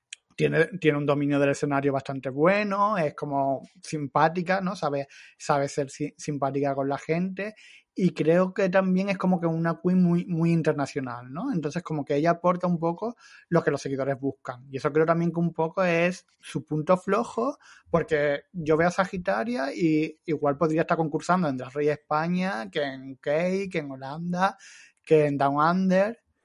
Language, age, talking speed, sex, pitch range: Spanish, 20-39, 180 wpm, male, 140-170 Hz